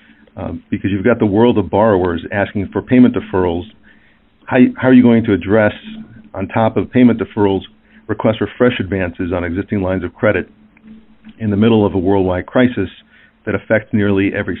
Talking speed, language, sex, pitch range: 180 wpm, English, male, 95-115 Hz